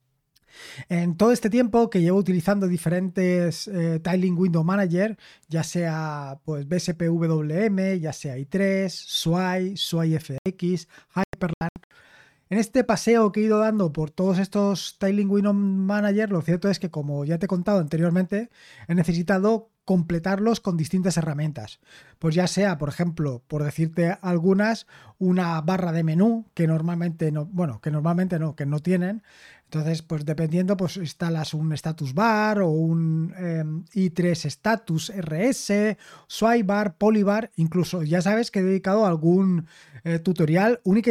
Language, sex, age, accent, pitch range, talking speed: Spanish, male, 20-39, Spanish, 165-200 Hz, 145 wpm